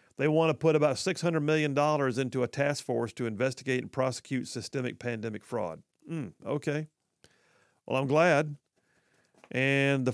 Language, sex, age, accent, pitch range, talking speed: English, male, 50-69, American, 125-160 Hz, 150 wpm